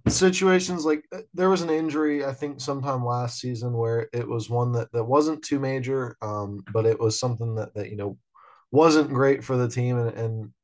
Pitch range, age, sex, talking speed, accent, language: 115-140 Hz, 20-39, male, 205 wpm, American, English